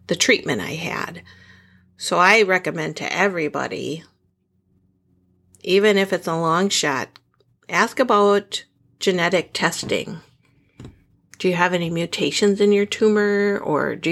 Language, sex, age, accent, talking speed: English, female, 50-69, American, 125 wpm